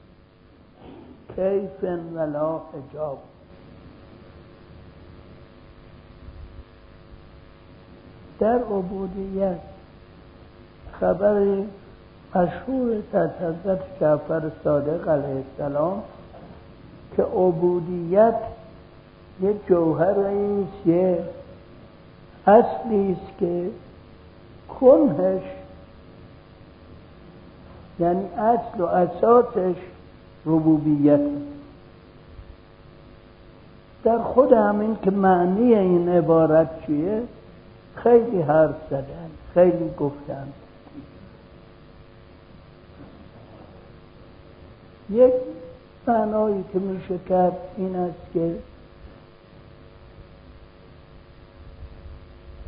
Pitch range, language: 135-195 Hz, Persian